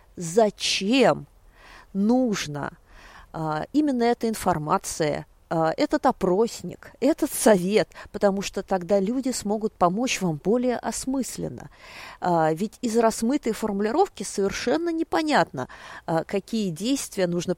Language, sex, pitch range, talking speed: Russian, female, 165-250 Hz, 90 wpm